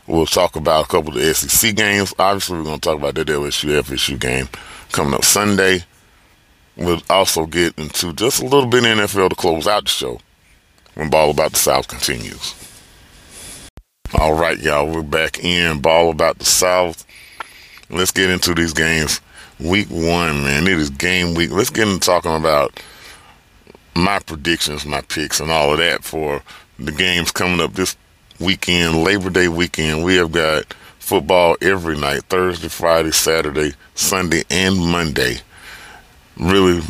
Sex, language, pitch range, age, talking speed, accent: male, English, 80-95 Hz, 40-59, 165 wpm, American